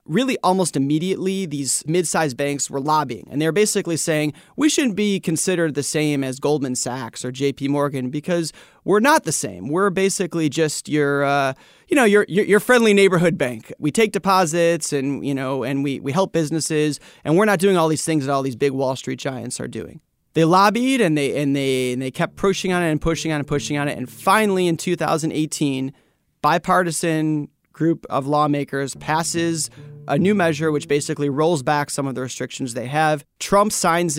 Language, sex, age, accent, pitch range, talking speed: English, male, 30-49, American, 140-175 Hz, 200 wpm